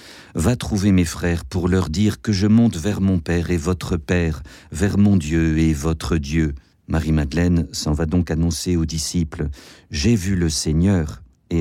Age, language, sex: 50-69, French, male